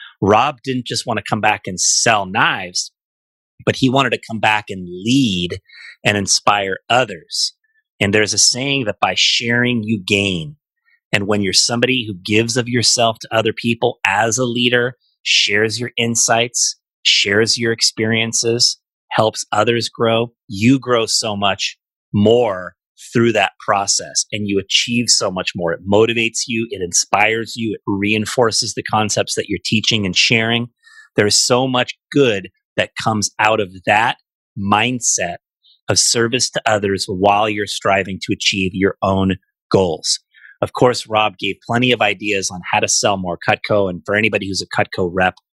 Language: English